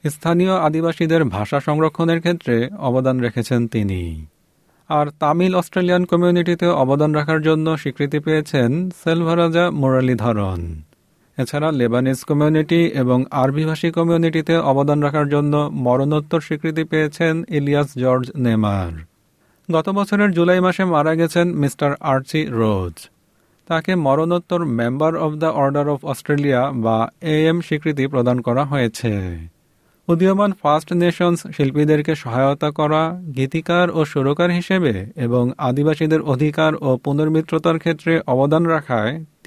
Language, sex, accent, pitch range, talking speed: Bengali, male, native, 130-165 Hz, 95 wpm